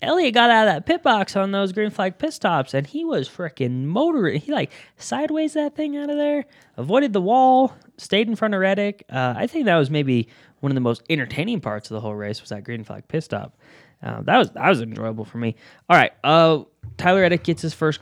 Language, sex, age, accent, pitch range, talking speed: English, male, 10-29, American, 120-170 Hz, 240 wpm